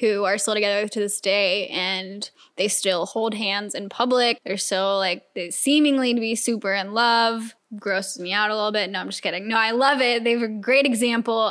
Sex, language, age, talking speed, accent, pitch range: female, English, 10-29, 220 wpm, American, 215-255 Hz